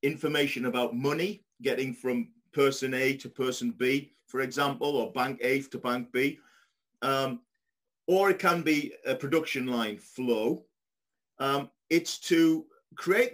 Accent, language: British, English